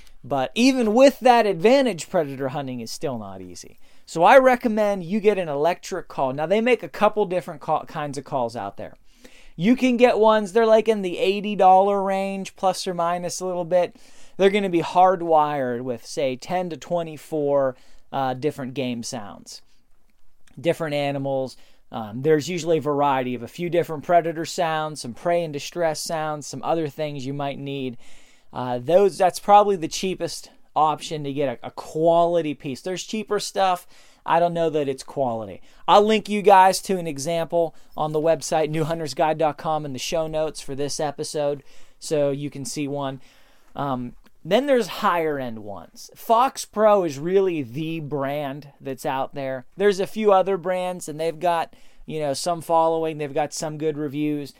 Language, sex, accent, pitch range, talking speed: English, male, American, 140-185 Hz, 175 wpm